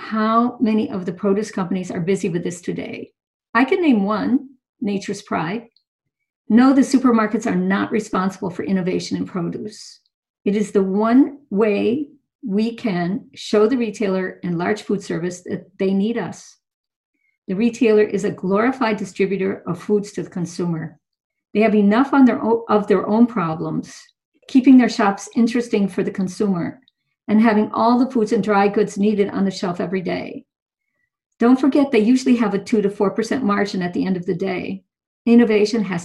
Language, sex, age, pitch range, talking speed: English, female, 50-69, 195-240 Hz, 170 wpm